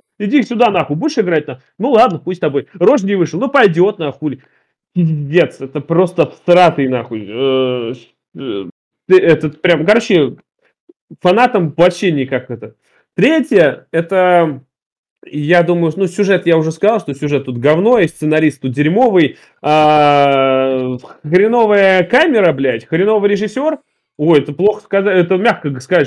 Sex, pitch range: male, 150-200 Hz